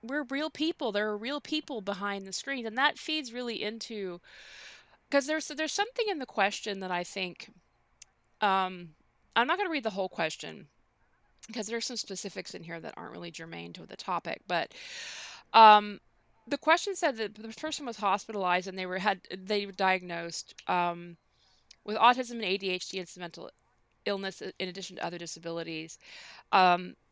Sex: female